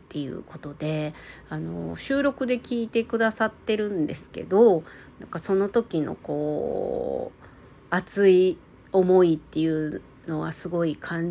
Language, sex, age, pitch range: Japanese, female, 40-59, 150-185 Hz